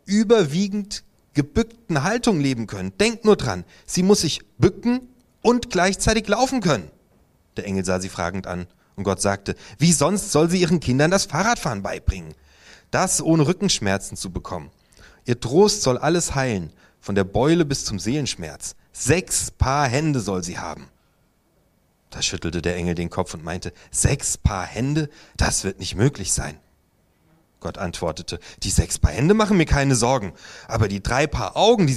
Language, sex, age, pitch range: German, male, 30-49, 95-155 Hz